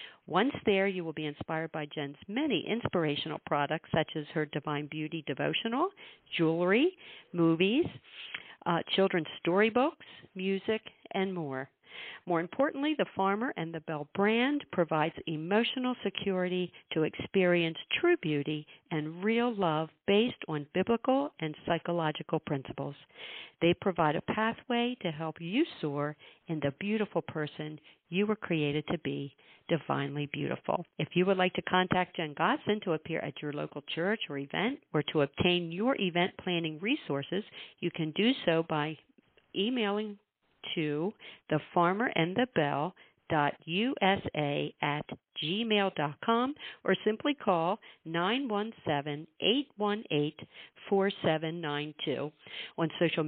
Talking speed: 125 wpm